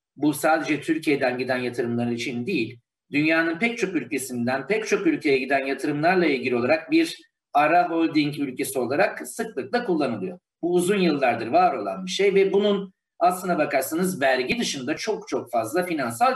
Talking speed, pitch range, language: 155 wpm, 145-225 Hz, Turkish